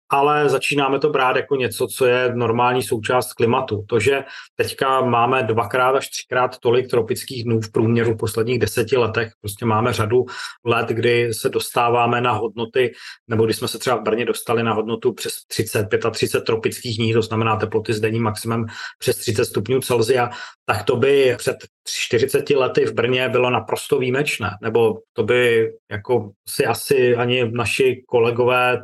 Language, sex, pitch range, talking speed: Czech, male, 120-150 Hz, 165 wpm